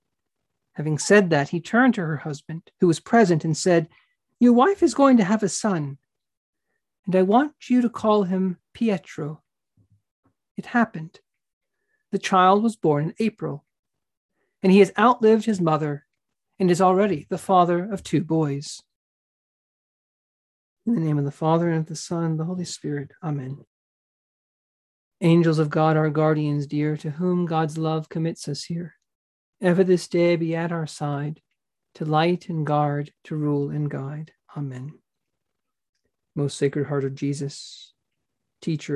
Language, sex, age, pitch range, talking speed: English, male, 40-59, 145-180 Hz, 155 wpm